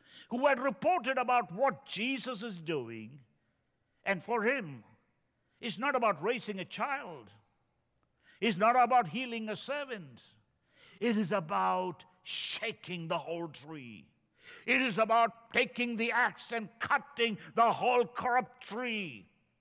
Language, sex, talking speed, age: English, male, 130 wpm, 60-79